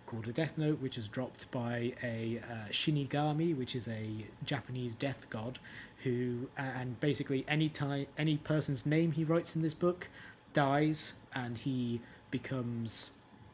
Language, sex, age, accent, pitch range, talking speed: English, male, 20-39, British, 120-145 Hz, 150 wpm